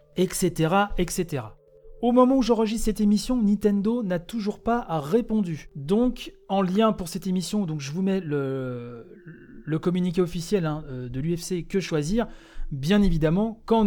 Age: 30-49